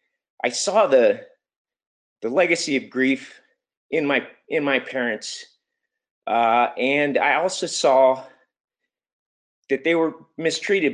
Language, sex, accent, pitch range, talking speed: English, male, American, 130-205 Hz, 115 wpm